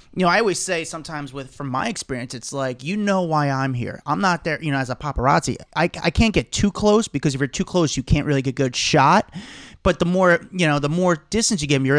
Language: English